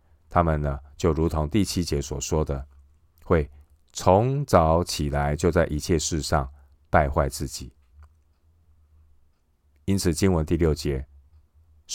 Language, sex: Chinese, male